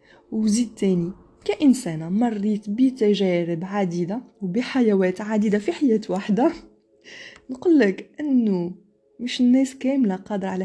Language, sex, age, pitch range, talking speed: Arabic, female, 20-39, 185-260 Hz, 105 wpm